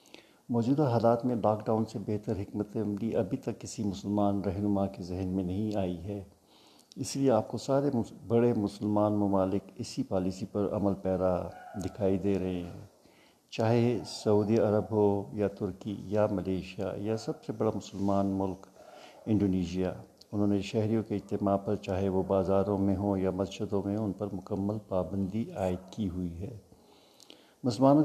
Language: Urdu